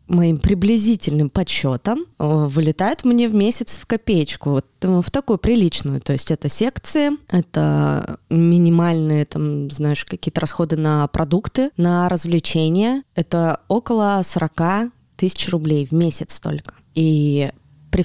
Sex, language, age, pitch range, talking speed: female, Russian, 20-39, 150-185 Hz, 125 wpm